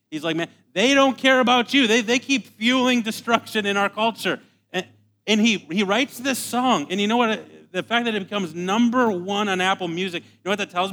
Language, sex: English, male